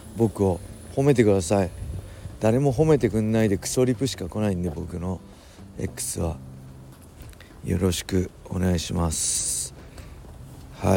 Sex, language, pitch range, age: male, Japanese, 90-120 Hz, 40-59